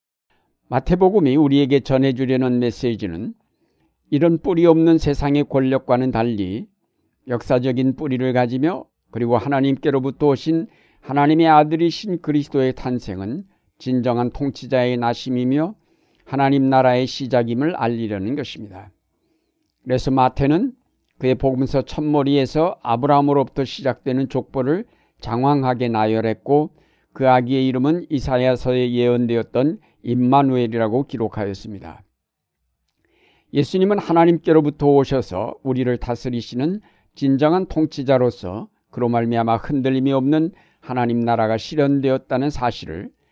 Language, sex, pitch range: Korean, male, 120-145 Hz